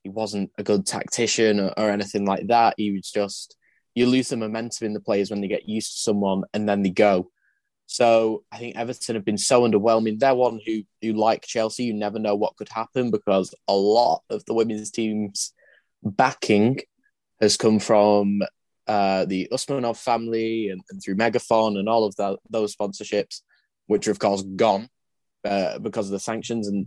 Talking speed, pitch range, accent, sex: 190 wpm, 100-115 Hz, British, male